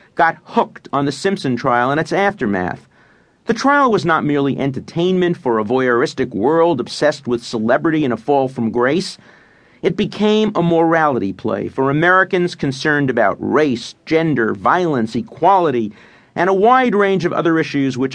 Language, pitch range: English, 130-185 Hz